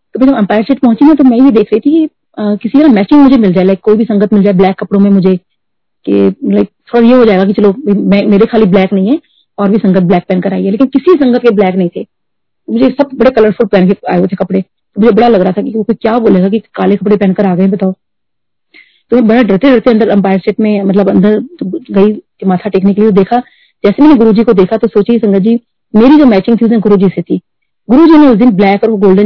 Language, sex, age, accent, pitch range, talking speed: Hindi, female, 30-49, native, 200-250 Hz, 250 wpm